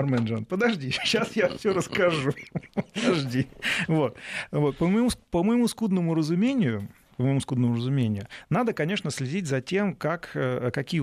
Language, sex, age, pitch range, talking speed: Russian, male, 40-59, 130-185 Hz, 140 wpm